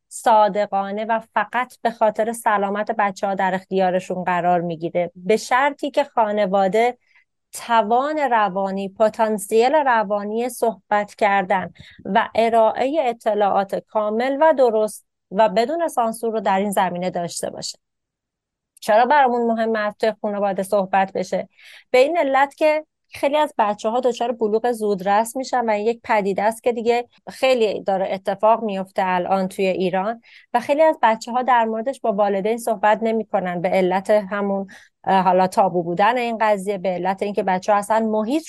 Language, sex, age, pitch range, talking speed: Persian, female, 30-49, 195-240 Hz, 150 wpm